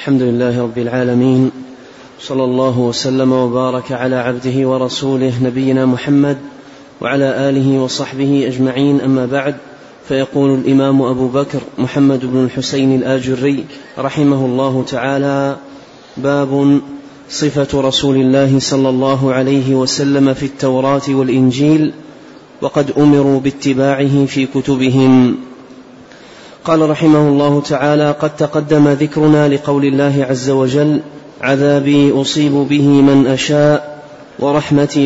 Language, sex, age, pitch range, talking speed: Arabic, male, 30-49, 135-145 Hz, 110 wpm